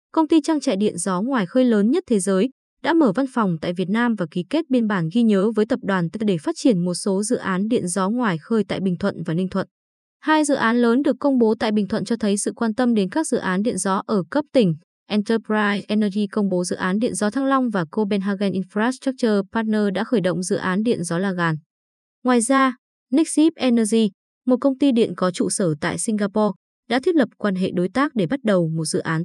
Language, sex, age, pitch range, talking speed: Vietnamese, female, 20-39, 190-250 Hz, 245 wpm